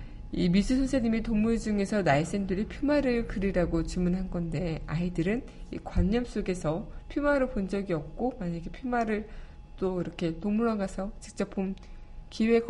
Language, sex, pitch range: Korean, female, 165-215 Hz